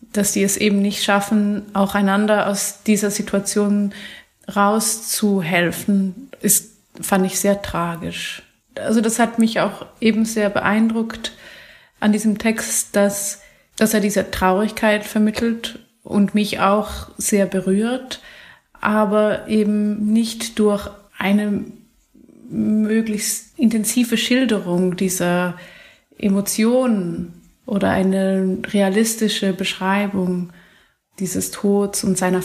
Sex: female